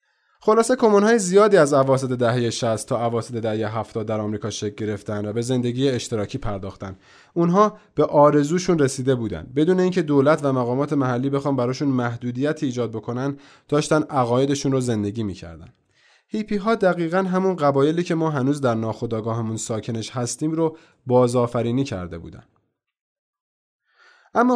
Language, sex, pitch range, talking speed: Persian, male, 115-160 Hz, 140 wpm